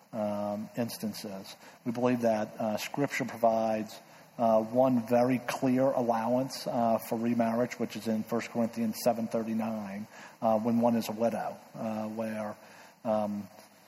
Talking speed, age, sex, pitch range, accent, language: 130 wpm, 40-59, male, 110-120 Hz, American, English